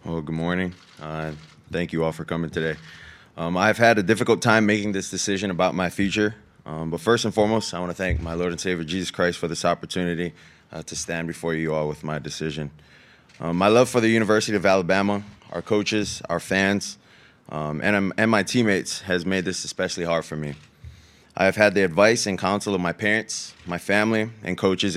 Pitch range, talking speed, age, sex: 85-100 Hz, 210 wpm, 20-39, male